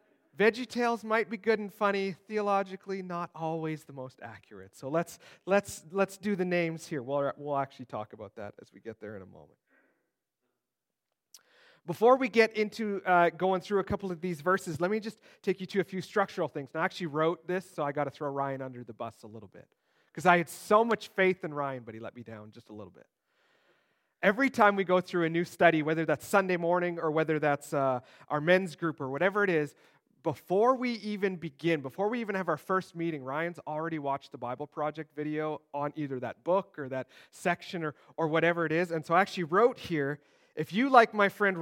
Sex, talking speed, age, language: male, 220 wpm, 40-59, English